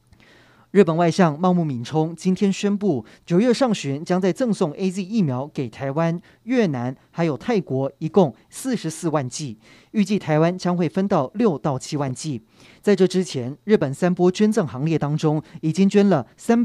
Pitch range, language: 145-195 Hz, Chinese